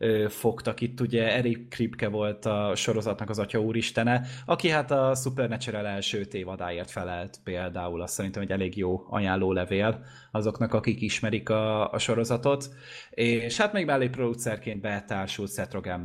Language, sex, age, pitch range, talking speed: Hungarian, male, 20-39, 100-120 Hz, 140 wpm